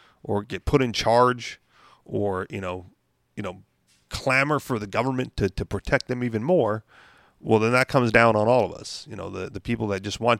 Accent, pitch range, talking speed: American, 105-145 Hz, 215 wpm